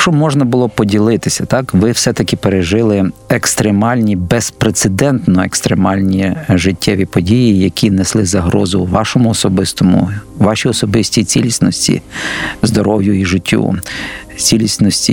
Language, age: Ukrainian, 50-69